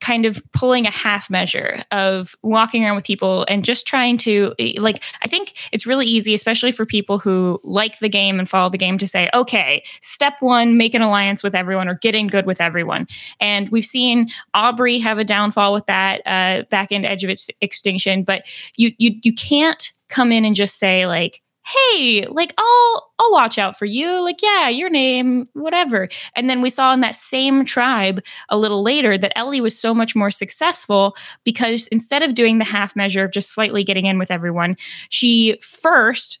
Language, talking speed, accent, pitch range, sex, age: English, 200 wpm, American, 200-245 Hz, female, 10-29